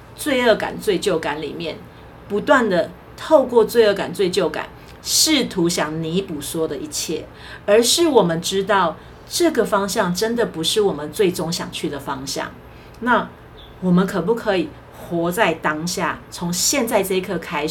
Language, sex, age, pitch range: Chinese, female, 40-59, 160-225 Hz